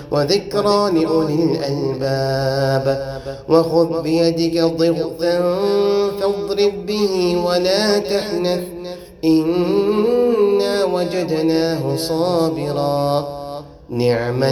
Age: 30-49